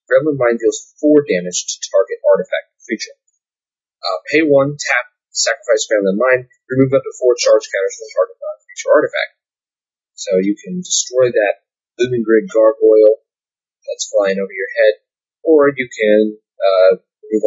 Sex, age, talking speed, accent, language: male, 30-49, 160 wpm, American, English